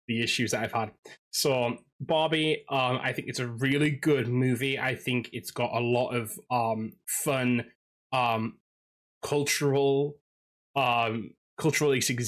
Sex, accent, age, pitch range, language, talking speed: male, British, 20-39, 115-140 Hz, English, 135 wpm